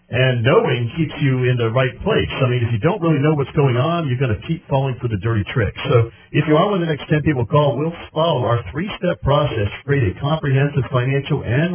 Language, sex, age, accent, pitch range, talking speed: English, male, 50-69, American, 105-150 Hz, 250 wpm